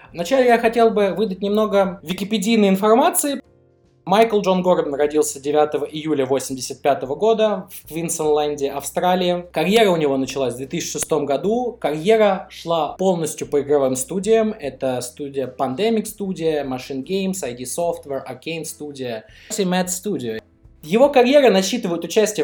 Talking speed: 130 wpm